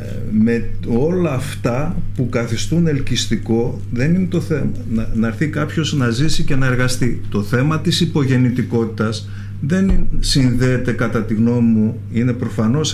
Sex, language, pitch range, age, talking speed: male, Greek, 105-135 Hz, 50-69, 145 wpm